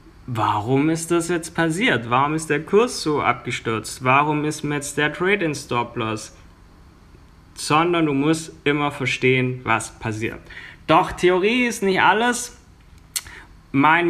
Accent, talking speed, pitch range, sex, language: German, 135 wpm, 120-165 Hz, male, German